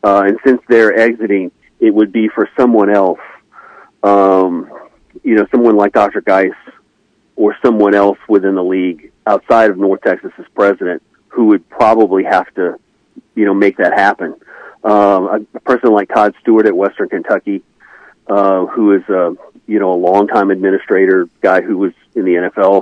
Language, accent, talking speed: English, American, 170 wpm